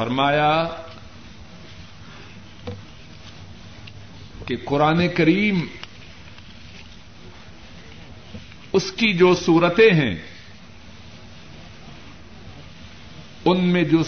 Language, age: Urdu, 50-69